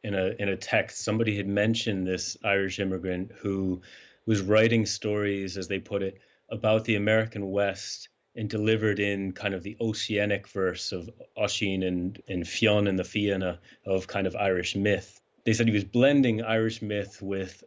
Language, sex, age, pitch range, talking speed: English, male, 30-49, 95-110 Hz, 175 wpm